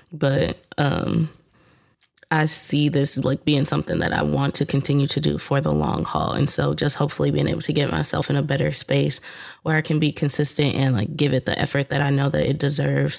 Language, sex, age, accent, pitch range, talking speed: English, female, 20-39, American, 140-150 Hz, 225 wpm